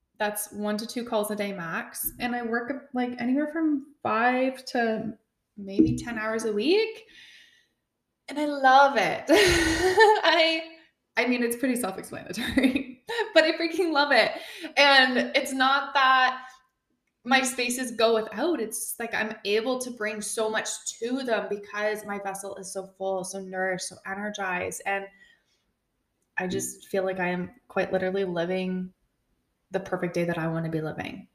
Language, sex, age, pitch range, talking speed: English, female, 20-39, 190-260 Hz, 160 wpm